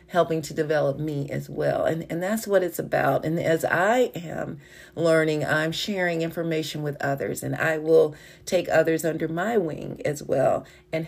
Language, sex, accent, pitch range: English, female, American, 155-190 Hz